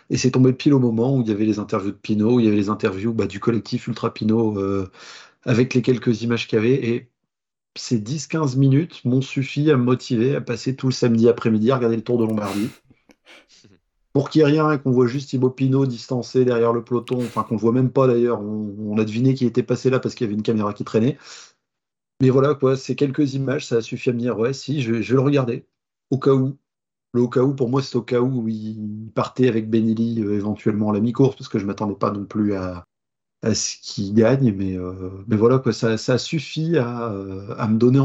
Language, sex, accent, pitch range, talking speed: French, male, French, 110-130 Hz, 250 wpm